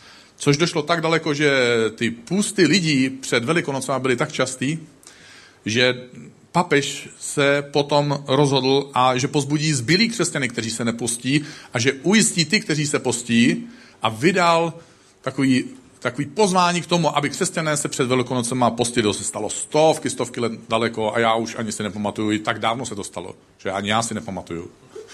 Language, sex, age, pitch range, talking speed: Czech, male, 40-59, 110-155 Hz, 165 wpm